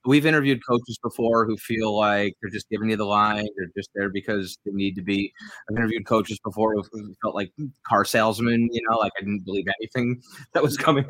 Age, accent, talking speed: 30-49, American, 215 wpm